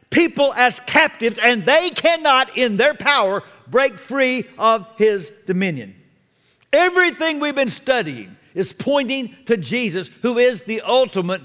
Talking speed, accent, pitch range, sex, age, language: 135 wpm, American, 185-255 Hz, male, 50-69, English